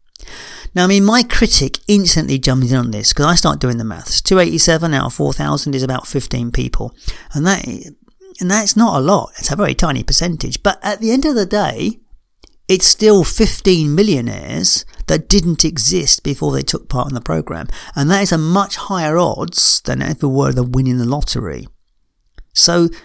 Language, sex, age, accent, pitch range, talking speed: English, male, 50-69, British, 130-190 Hz, 185 wpm